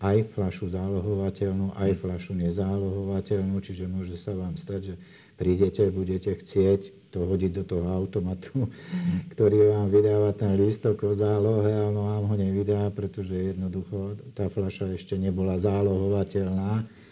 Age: 50-69